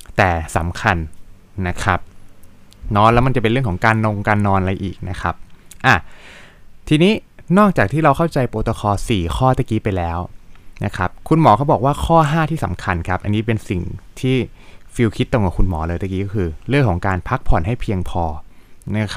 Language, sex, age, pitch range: Thai, male, 20-39, 90-115 Hz